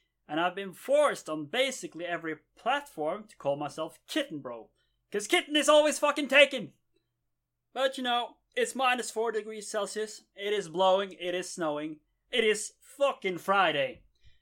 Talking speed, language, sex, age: 155 wpm, English, male, 30-49